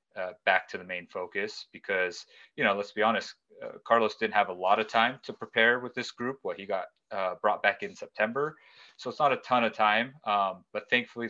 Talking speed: 230 wpm